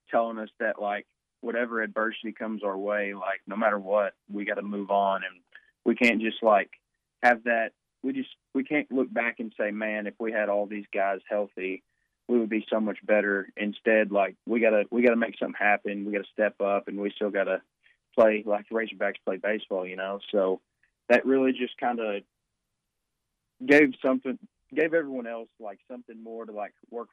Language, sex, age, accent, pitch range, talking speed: English, male, 20-39, American, 100-120 Hz, 195 wpm